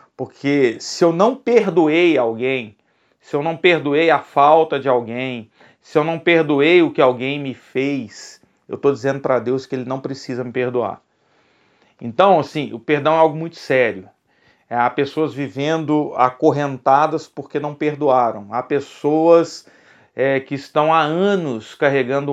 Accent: Brazilian